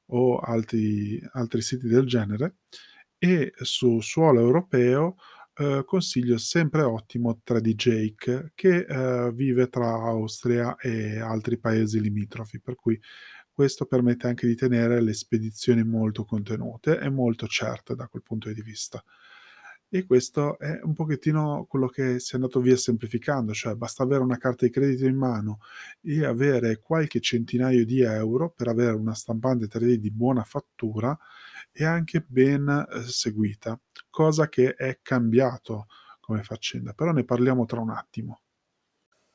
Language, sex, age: Italian, male, 20-39